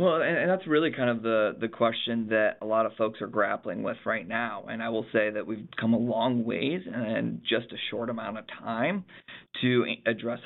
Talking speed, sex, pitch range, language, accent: 220 wpm, male, 110-125 Hz, English, American